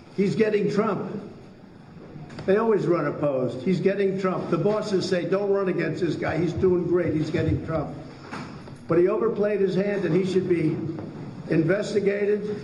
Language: English